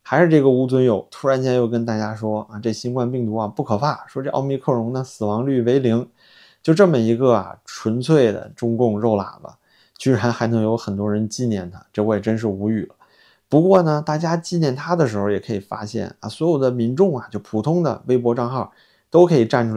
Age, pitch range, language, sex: 20-39, 105-120 Hz, Chinese, male